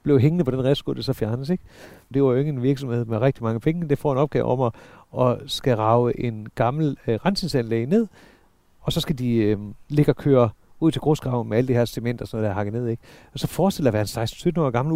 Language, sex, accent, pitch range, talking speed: Danish, male, native, 120-170 Hz, 255 wpm